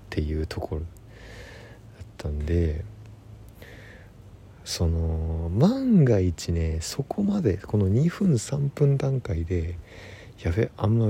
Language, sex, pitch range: Japanese, male, 90-120 Hz